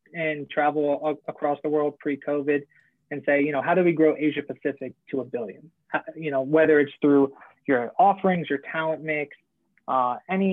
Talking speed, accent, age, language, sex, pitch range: 175 wpm, American, 20-39, English, male, 140-165 Hz